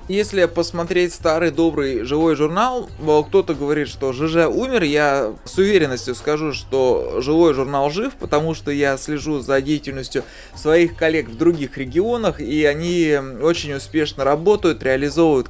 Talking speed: 140 wpm